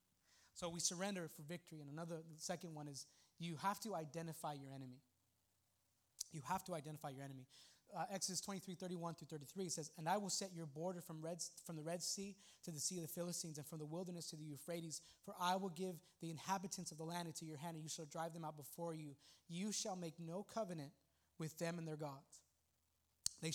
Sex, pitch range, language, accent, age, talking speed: male, 155-185 Hz, English, American, 20-39, 215 wpm